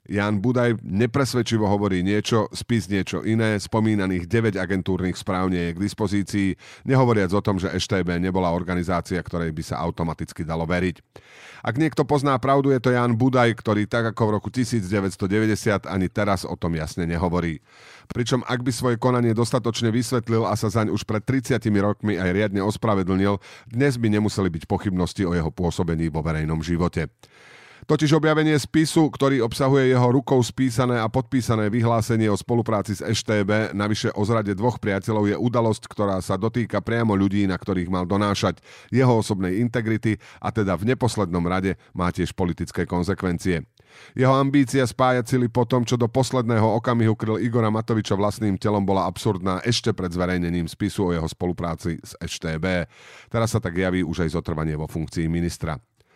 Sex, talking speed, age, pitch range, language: male, 165 wpm, 40-59, 90-120 Hz, Slovak